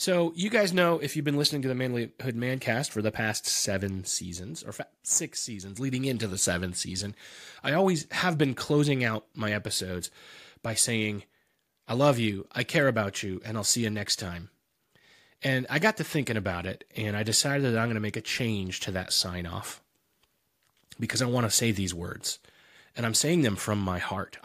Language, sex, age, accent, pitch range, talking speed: English, male, 30-49, American, 100-135 Hz, 200 wpm